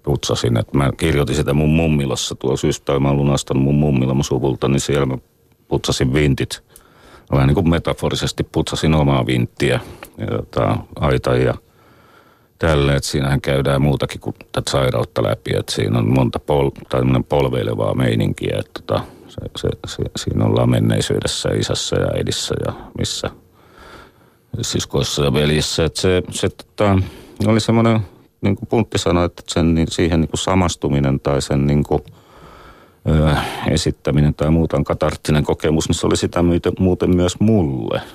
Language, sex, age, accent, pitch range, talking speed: Finnish, male, 40-59, native, 70-95 Hz, 150 wpm